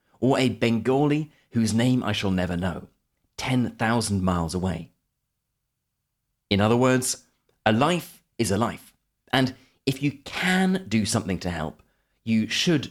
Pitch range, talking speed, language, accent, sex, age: 100-135 Hz, 140 wpm, English, British, male, 30-49